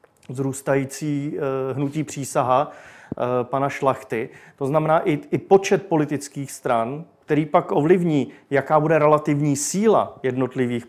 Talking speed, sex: 120 wpm, male